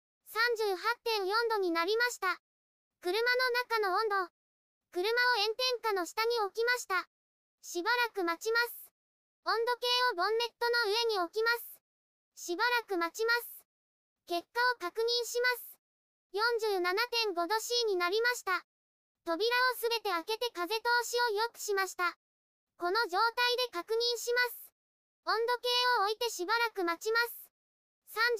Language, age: Japanese, 20-39